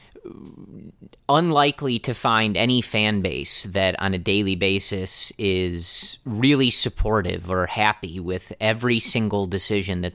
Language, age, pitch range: English, 30-49, 95-110 Hz